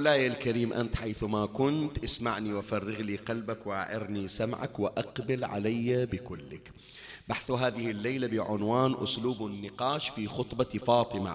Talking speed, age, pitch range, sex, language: 125 wpm, 40-59, 110-170 Hz, male, Arabic